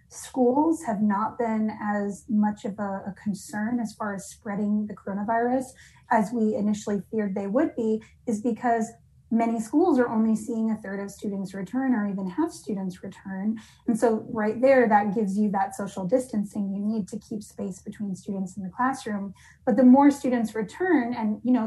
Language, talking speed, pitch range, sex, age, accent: English, 190 wpm, 205-235 Hz, female, 30-49, American